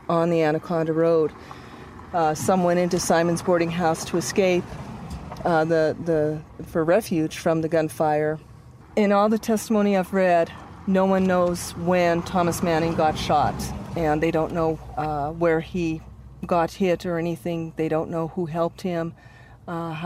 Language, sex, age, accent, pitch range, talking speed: English, female, 40-59, American, 155-170 Hz, 160 wpm